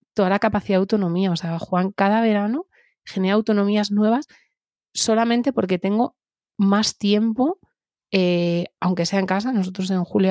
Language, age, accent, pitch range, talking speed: Spanish, 30-49, Spanish, 180-205 Hz, 150 wpm